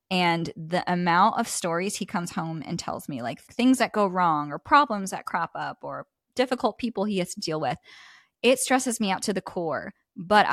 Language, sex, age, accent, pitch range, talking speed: English, female, 10-29, American, 180-225 Hz, 210 wpm